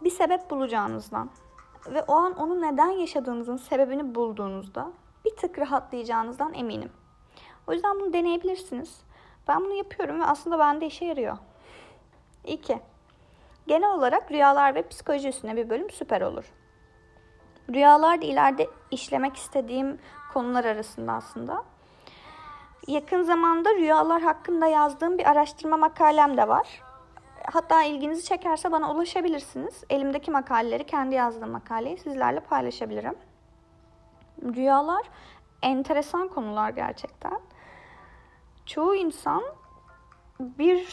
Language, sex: Turkish, female